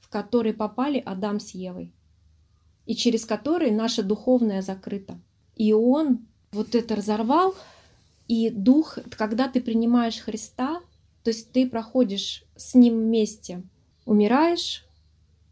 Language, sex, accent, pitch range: Russian, female, native, 195-240 Hz